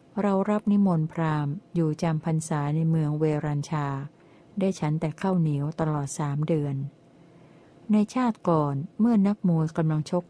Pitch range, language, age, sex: 155-180 Hz, Thai, 60-79, female